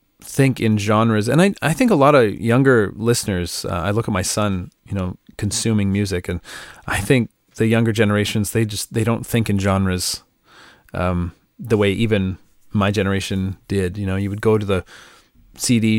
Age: 30-49